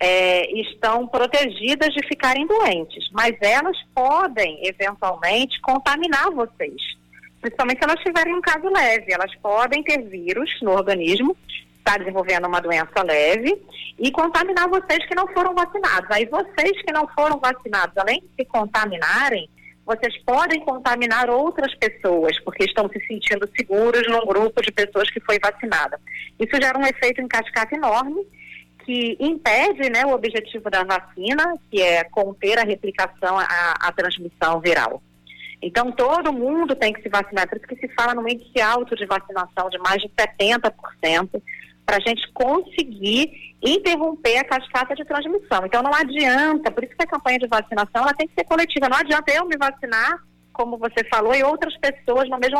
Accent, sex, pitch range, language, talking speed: Brazilian, female, 200-290 Hz, Portuguese, 170 wpm